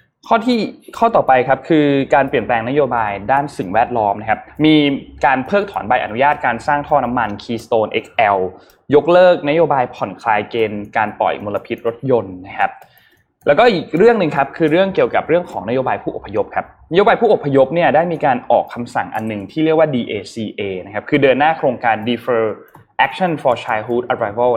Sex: male